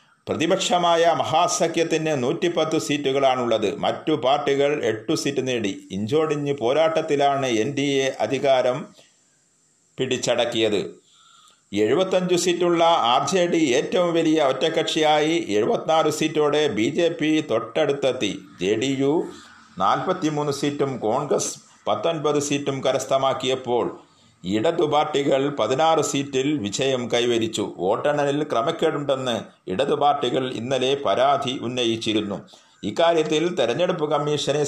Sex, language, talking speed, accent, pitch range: male, Malayalam, 85 wpm, native, 130-155 Hz